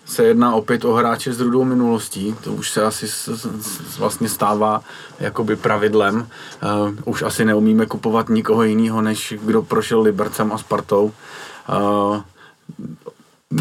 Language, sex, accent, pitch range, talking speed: Czech, male, native, 100-110 Hz, 145 wpm